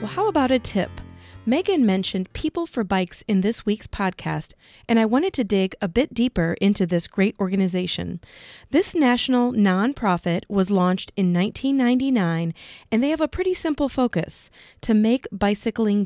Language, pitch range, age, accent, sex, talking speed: English, 190-250 Hz, 40-59, American, female, 160 wpm